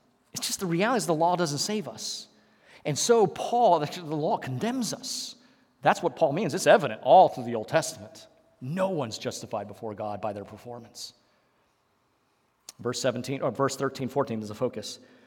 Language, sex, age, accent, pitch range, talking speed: English, male, 40-59, American, 130-215 Hz, 170 wpm